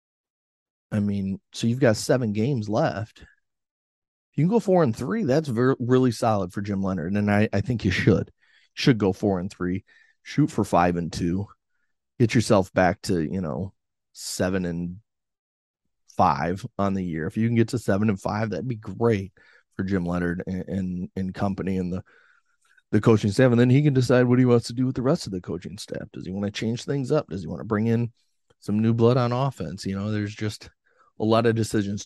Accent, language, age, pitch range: American, English, 30-49, 95-115 Hz